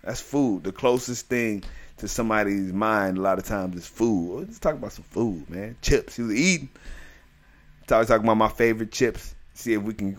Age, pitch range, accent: 30-49, 95-115 Hz, American